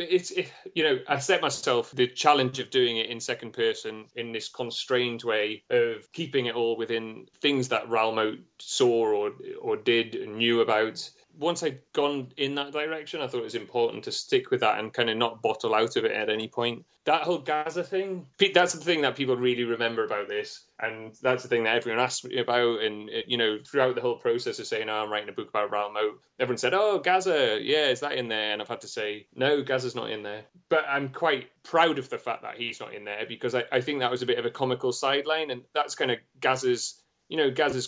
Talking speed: 235 wpm